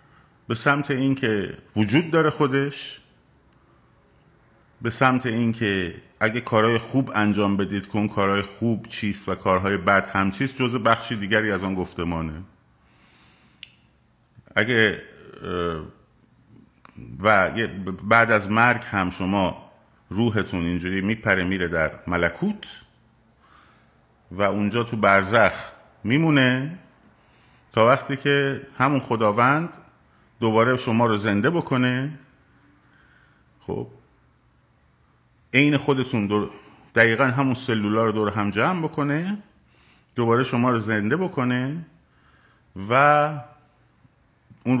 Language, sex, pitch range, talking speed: Persian, male, 100-135 Hz, 100 wpm